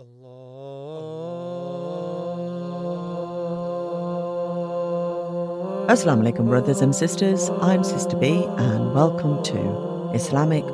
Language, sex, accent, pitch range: English, female, British, 120-180 Hz